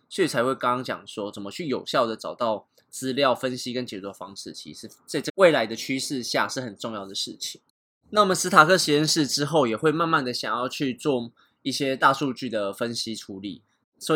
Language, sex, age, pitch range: Chinese, male, 20-39, 110-145 Hz